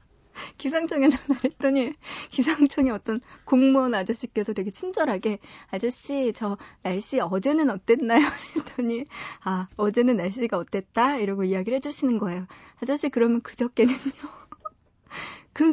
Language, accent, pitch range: Korean, native, 200-270 Hz